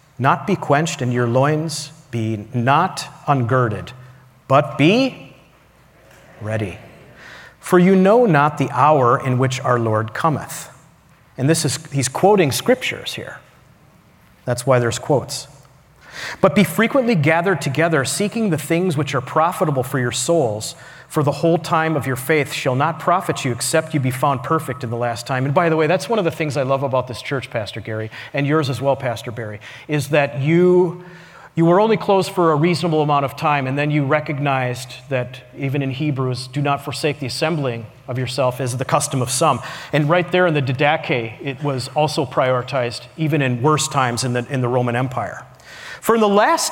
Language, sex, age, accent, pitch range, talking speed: English, male, 40-59, American, 130-175 Hz, 190 wpm